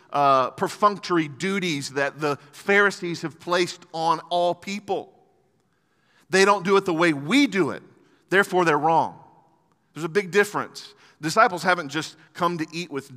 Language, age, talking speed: English, 40-59, 155 wpm